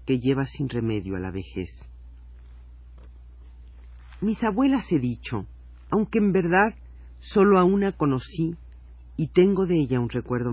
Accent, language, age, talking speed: Mexican, Spanish, 50-69, 135 wpm